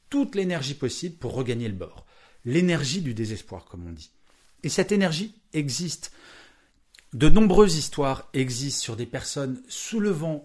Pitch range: 110-175 Hz